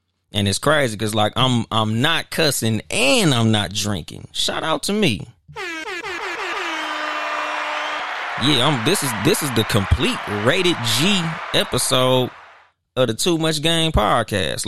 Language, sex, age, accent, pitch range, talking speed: English, male, 20-39, American, 100-130 Hz, 140 wpm